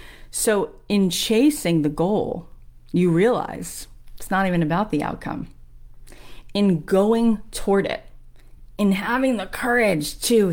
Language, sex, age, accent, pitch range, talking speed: English, female, 40-59, American, 150-200 Hz, 125 wpm